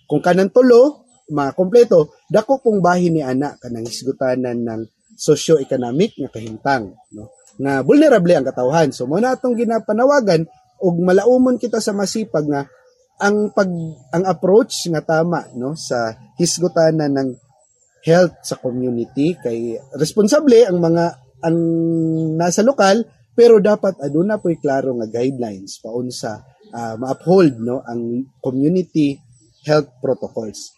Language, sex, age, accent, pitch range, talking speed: Filipino, male, 30-49, native, 135-230 Hz, 130 wpm